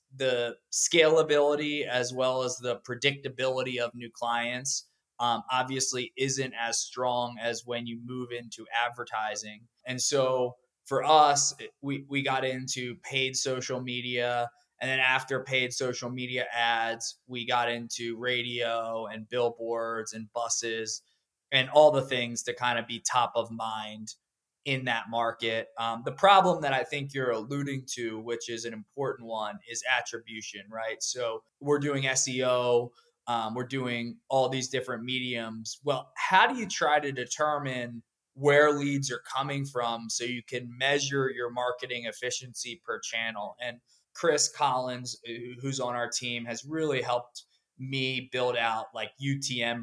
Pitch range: 115-135 Hz